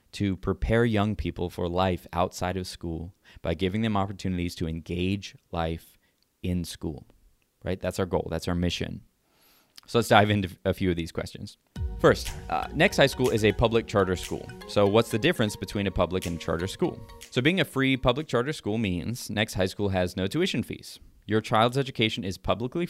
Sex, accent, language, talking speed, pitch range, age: male, American, English, 195 wpm, 90-110 Hz, 20-39